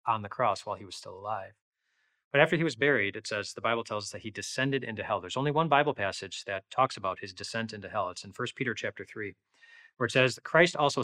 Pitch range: 110-150 Hz